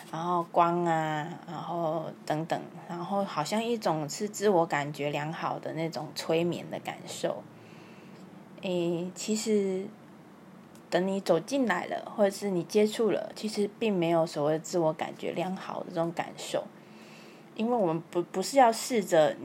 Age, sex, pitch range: 20-39, female, 160-185 Hz